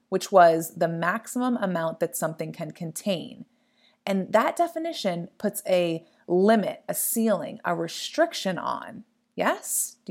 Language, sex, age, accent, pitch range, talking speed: English, female, 30-49, American, 185-245 Hz, 130 wpm